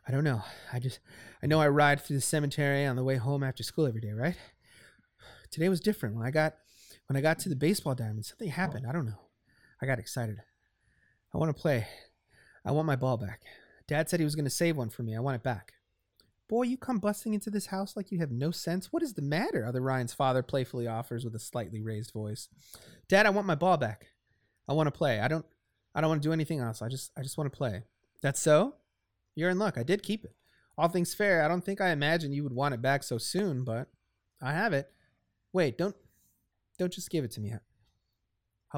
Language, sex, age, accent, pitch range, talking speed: English, male, 30-49, American, 115-160 Hz, 240 wpm